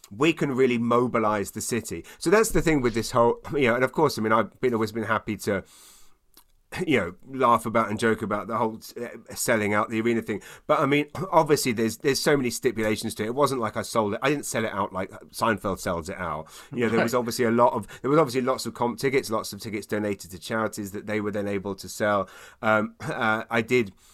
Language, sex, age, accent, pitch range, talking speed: English, male, 30-49, British, 105-130 Hz, 250 wpm